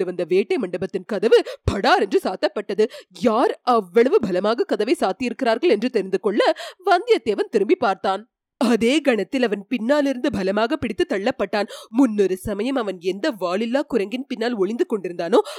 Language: Tamil